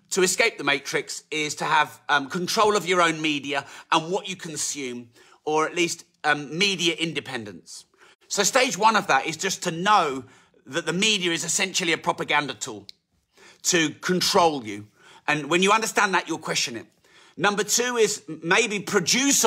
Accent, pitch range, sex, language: British, 145-180 Hz, male, English